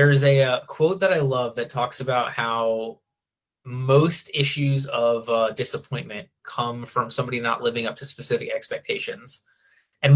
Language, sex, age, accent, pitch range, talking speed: English, male, 20-39, American, 115-145 Hz, 160 wpm